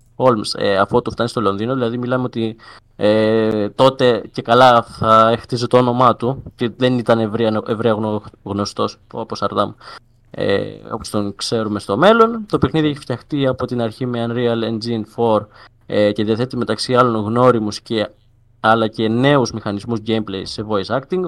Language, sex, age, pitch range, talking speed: Greek, male, 20-39, 110-135 Hz, 140 wpm